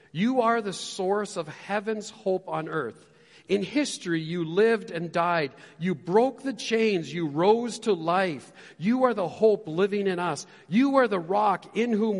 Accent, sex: American, male